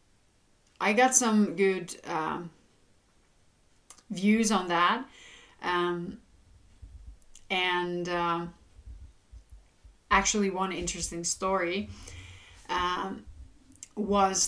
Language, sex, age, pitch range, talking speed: English, female, 30-49, 175-210 Hz, 70 wpm